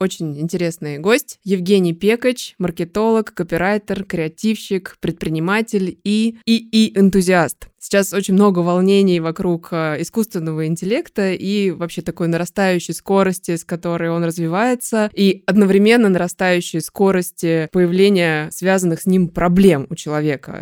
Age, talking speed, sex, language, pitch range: 20-39, 115 wpm, female, Russian, 170-205 Hz